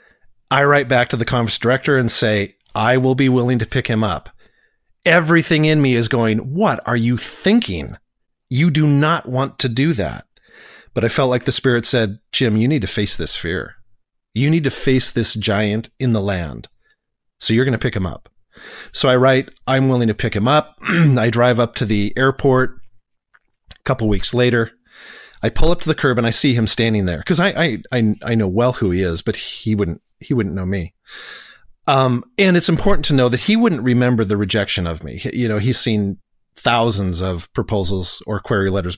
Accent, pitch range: American, 105-135 Hz